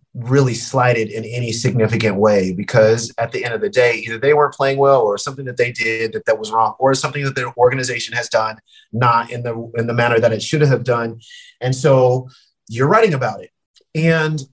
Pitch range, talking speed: 115-140 Hz, 215 wpm